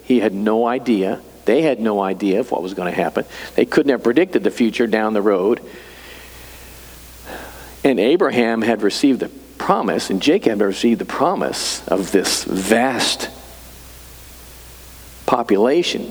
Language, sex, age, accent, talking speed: English, male, 50-69, American, 145 wpm